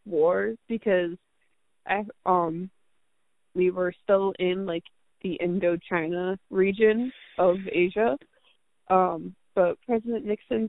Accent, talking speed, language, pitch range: American, 100 wpm, English, 185-255 Hz